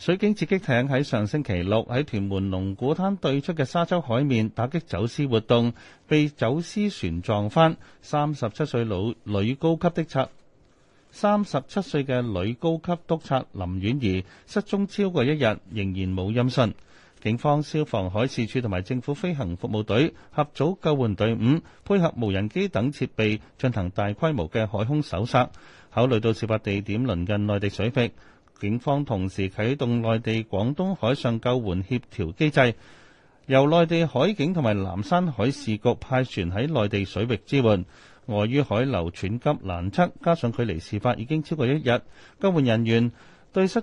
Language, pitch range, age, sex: Chinese, 105-150 Hz, 30-49, male